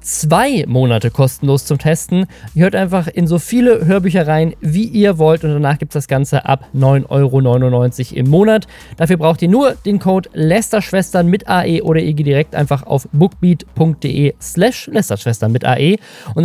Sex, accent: male, German